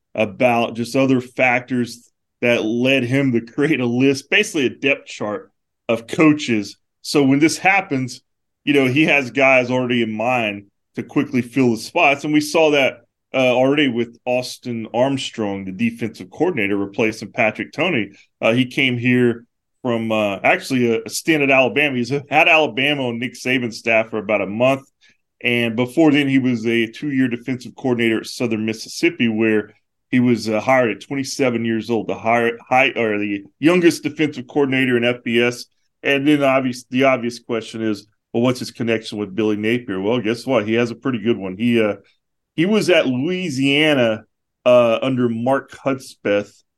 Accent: American